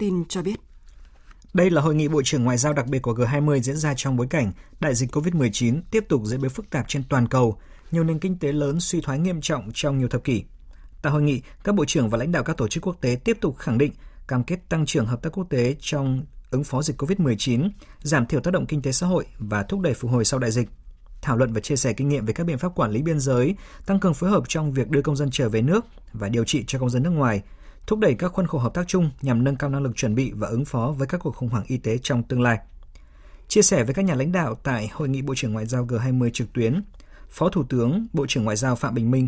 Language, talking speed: Vietnamese, 280 wpm